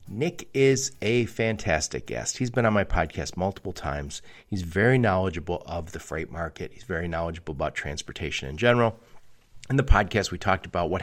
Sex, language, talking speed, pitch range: male, English, 180 wpm, 90-115 Hz